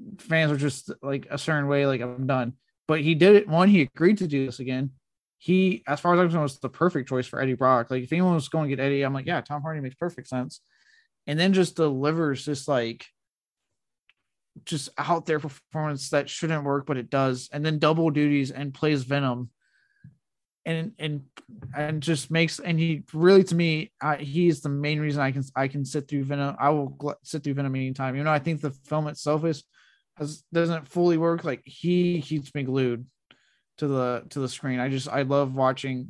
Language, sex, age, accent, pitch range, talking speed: English, male, 20-39, American, 135-160 Hz, 210 wpm